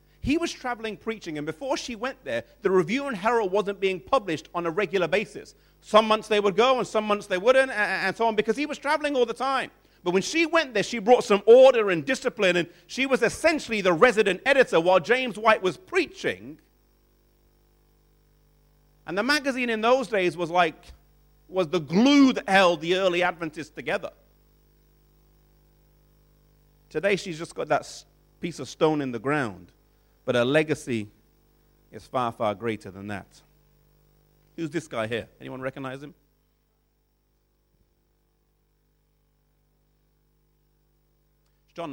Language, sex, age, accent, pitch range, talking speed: English, male, 40-59, British, 165-245 Hz, 155 wpm